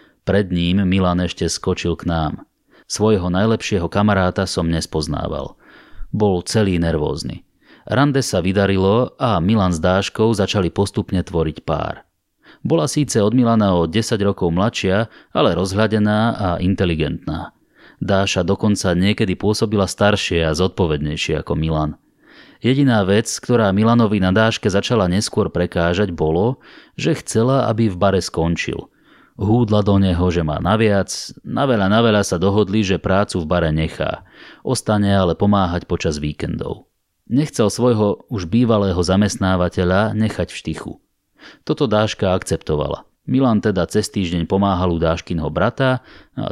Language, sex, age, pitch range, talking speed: Slovak, male, 30-49, 90-110 Hz, 135 wpm